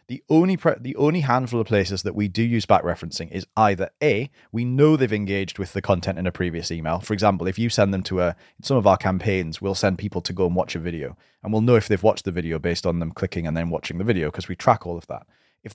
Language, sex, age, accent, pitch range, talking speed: English, male, 30-49, British, 95-120 Hz, 275 wpm